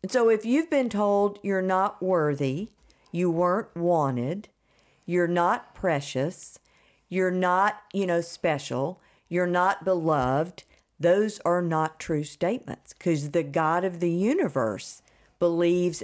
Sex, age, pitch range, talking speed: female, 50-69, 155-185 Hz, 125 wpm